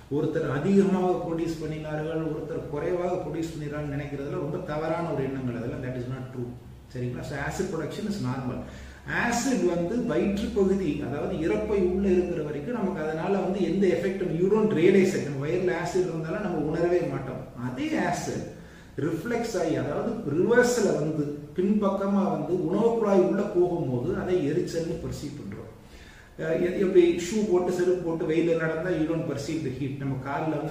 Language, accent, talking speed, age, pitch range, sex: Tamil, native, 145 wpm, 30-49, 140-185 Hz, male